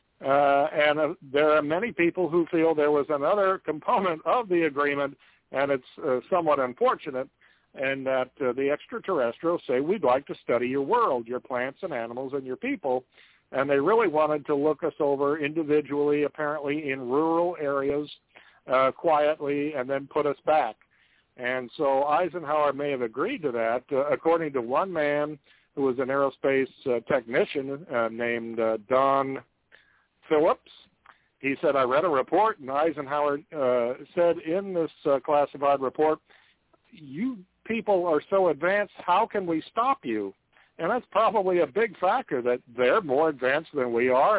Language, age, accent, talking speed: English, 50-69, American, 165 wpm